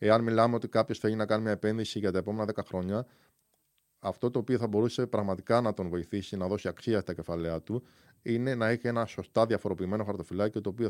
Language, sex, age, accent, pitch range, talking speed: Greek, male, 20-39, native, 95-120 Hz, 210 wpm